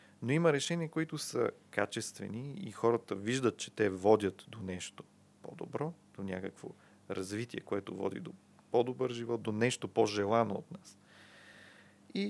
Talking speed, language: 140 wpm, Bulgarian